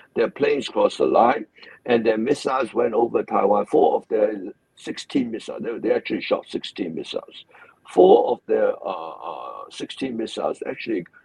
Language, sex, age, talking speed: English, male, 60-79, 160 wpm